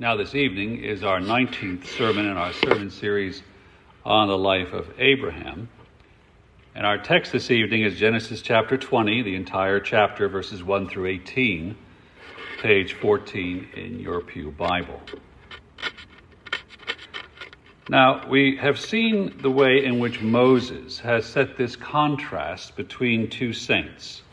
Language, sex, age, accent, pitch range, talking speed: English, male, 50-69, American, 95-125 Hz, 135 wpm